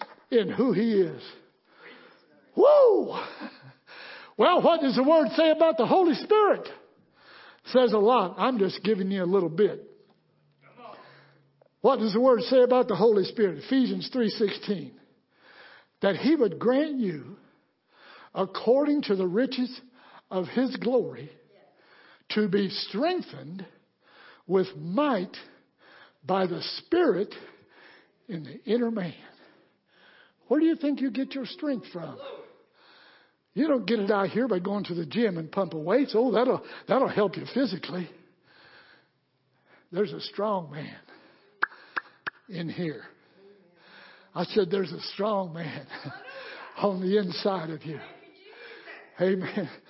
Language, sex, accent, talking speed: English, male, American, 130 wpm